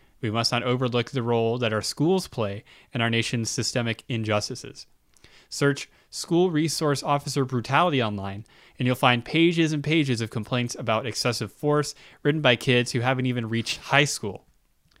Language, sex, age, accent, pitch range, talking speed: English, male, 10-29, American, 120-145 Hz, 165 wpm